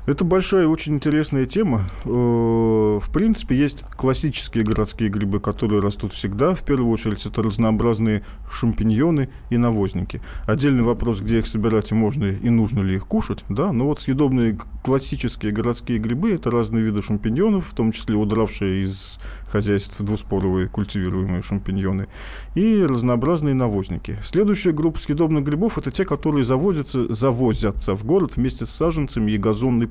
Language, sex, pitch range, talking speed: Russian, male, 105-135 Hz, 145 wpm